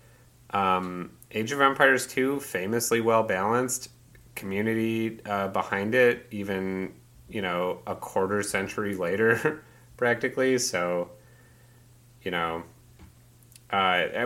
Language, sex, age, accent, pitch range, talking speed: English, male, 30-49, American, 95-120 Hz, 95 wpm